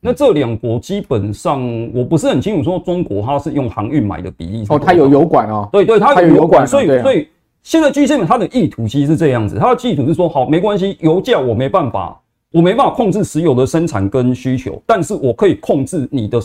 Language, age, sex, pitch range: Chinese, 30-49, male, 120-180 Hz